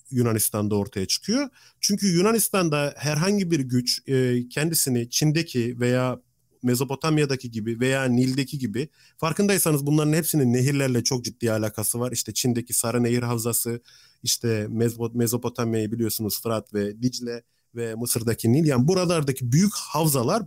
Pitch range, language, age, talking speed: 115-165 Hz, Turkish, 40-59, 125 wpm